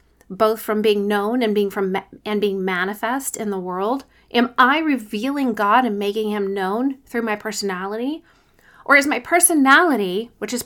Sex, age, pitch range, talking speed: female, 30-49, 205-280 Hz, 170 wpm